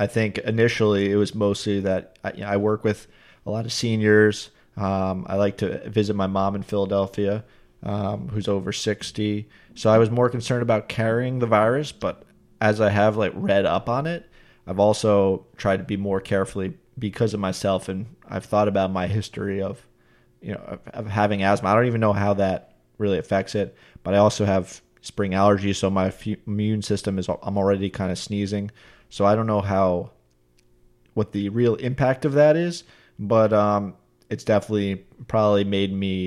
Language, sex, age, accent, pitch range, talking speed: English, male, 20-39, American, 95-110 Hz, 190 wpm